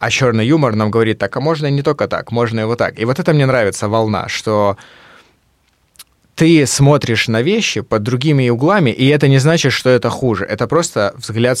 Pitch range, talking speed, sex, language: 110-140 Hz, 205 wpm, male, Russian